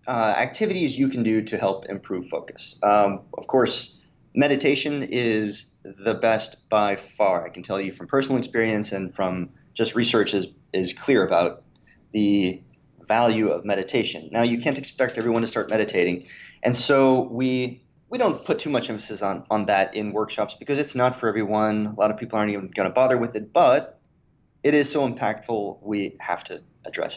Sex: male